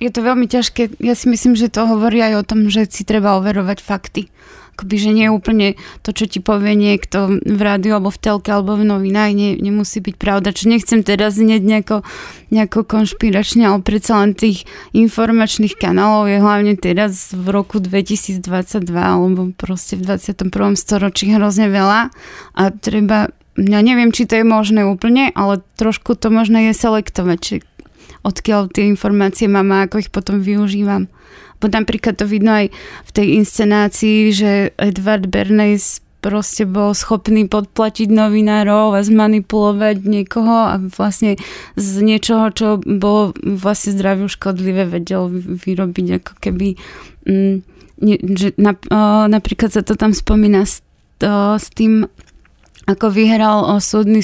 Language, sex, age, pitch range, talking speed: Slovak, female, 20-39, 195-215 Hz, 145 wpm